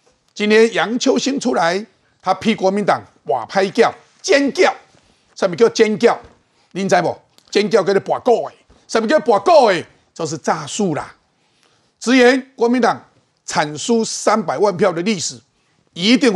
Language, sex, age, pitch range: Chinese, male, 50-69, 175-235 Hz